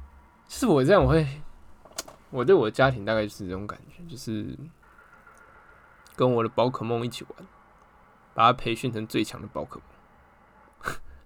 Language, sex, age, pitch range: Chinese, male, 20-39, 115-145 Hz